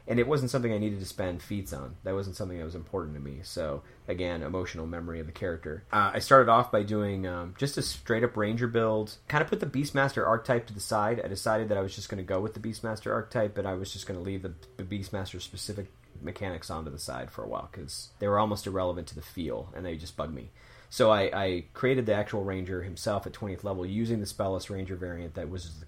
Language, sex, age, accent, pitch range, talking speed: English, male, 30-49, American, 90-110 Hz, 255 wpm